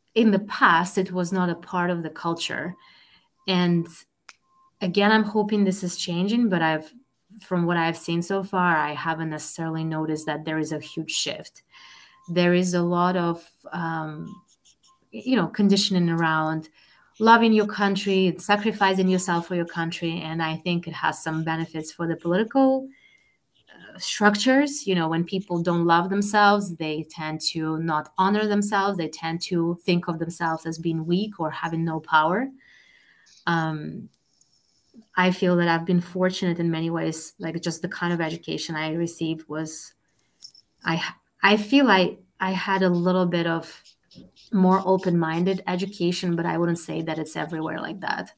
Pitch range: 165-195 Hz